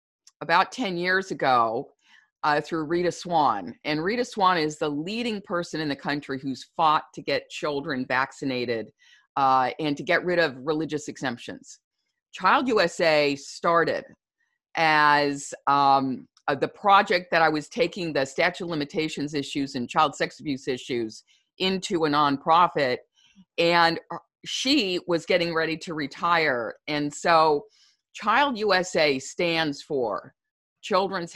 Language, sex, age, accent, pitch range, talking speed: English, female, 50-69, American, 140-175 Hz, 135 wpm